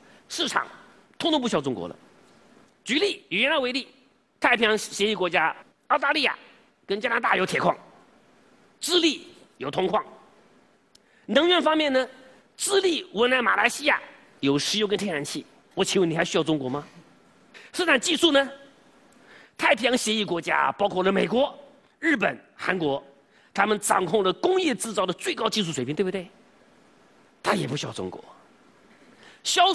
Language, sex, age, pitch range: Chinese, male, 40-59, 205-295 Hz